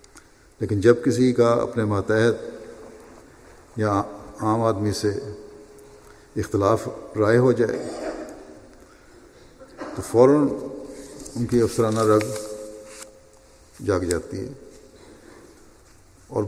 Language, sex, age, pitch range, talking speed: Urdu, male, 50-69, 105-120 Hz, 85 wpm